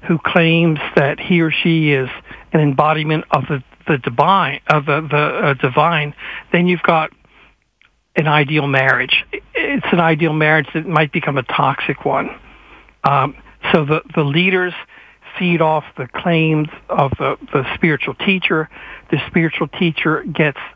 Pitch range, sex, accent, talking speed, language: 150-175 Hz, male, American, 150 wpm, English